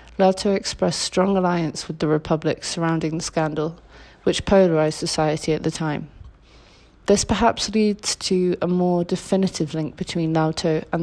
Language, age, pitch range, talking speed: English, 30-49, 165-185 Hz, 145 wpm